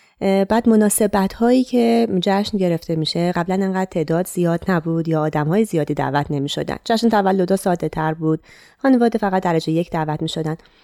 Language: Persian